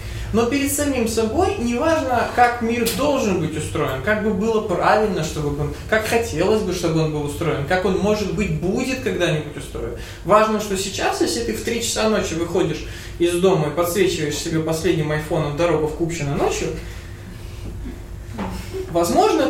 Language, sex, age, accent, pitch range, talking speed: Russian, male, 20-39, native, 145-215 Hz, 160 wpm